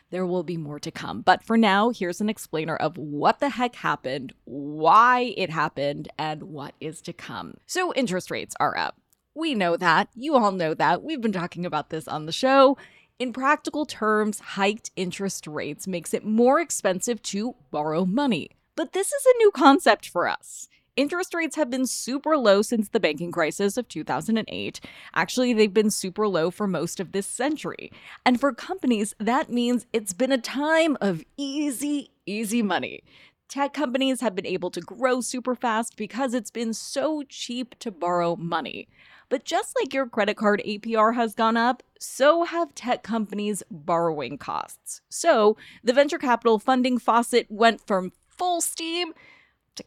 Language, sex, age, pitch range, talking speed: English, female, 20-39, 180-265 Hz, 175 wpm